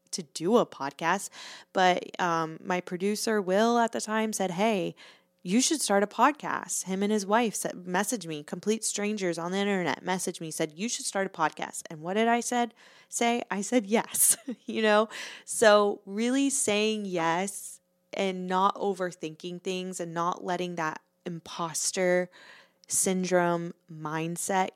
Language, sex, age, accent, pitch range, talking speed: English, female, 20-39, American, 165-200 Hz, 155 wpm